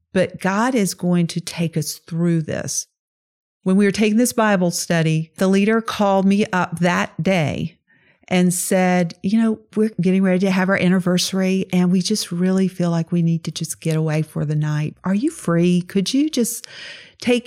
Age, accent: 50-69, American